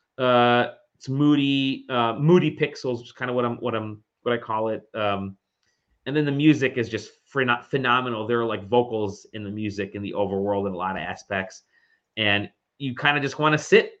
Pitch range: 110-140 Hz